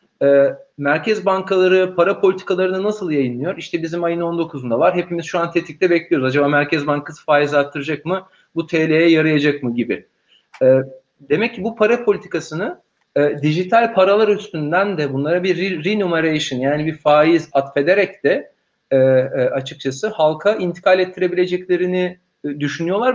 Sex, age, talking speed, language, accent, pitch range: male, 40-59, 140 wpm, Turkish, native, 155-205 Hz